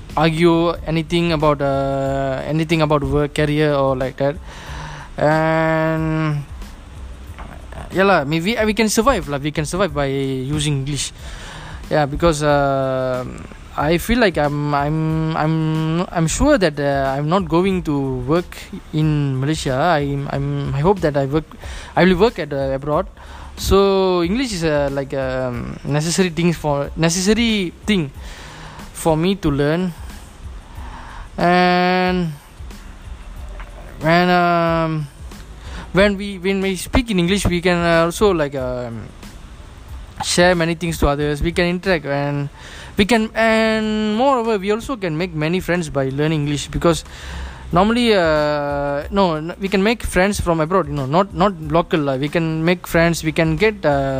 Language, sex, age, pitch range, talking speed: English, male, 20-39, 140-175 Hz, 150 wpm